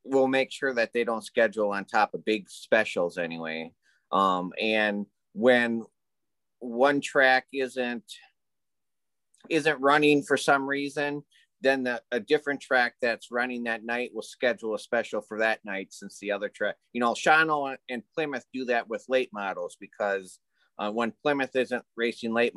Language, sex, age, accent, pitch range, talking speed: English, male, 30-49, American, 110-140 Hz, 160 wpm